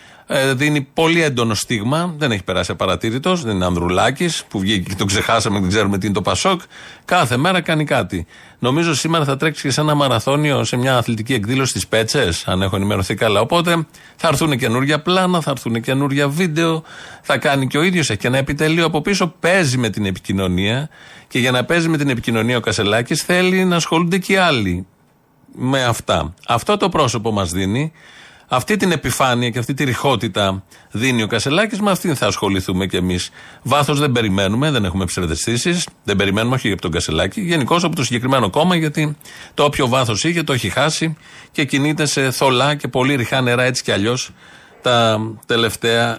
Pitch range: 105-155 Hz